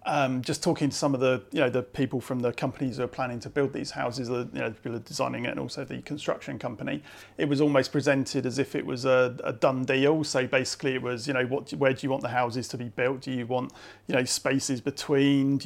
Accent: British